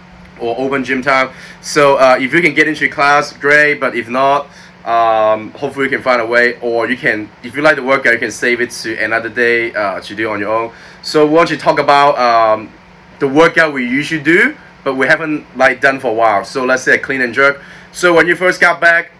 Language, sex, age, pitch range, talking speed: English, male, 20-39, 120-155 Hz, 240 wpm